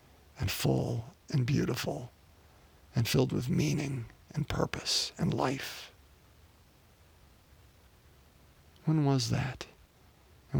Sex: male